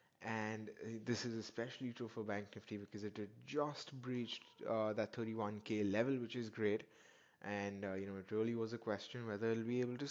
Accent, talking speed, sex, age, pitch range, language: Indian, 200 wpm, male, 20-39, 105-130 Hz, English